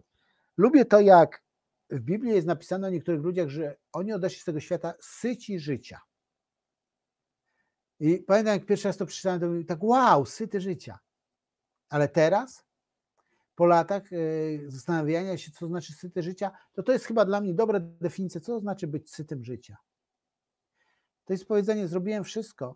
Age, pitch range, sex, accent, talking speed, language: 50-69, 155-205 Hz, male, native, 160 wpm, Polish